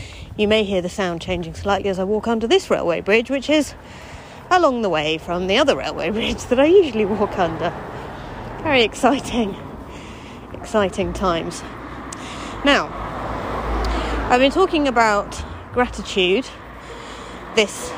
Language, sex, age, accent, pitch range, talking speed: English, female, 30-49, British, 155-230 Hz, 135 wpm